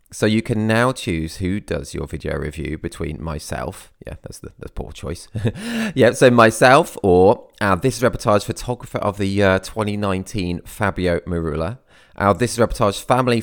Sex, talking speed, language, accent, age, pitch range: male, 175 wpm, English, British, 20-39, 85-110 Hz